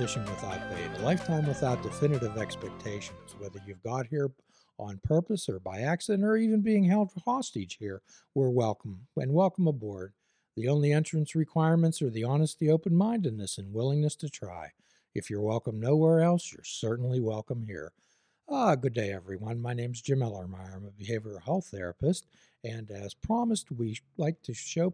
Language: English